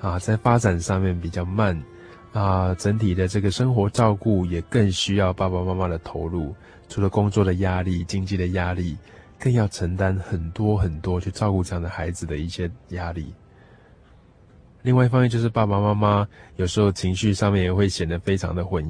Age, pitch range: 20-39, 90-110 Hz